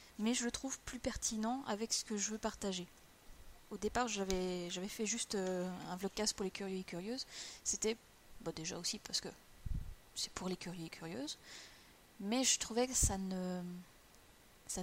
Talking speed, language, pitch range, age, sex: 180 wpm, French, 190-230 Hz, 20-39, female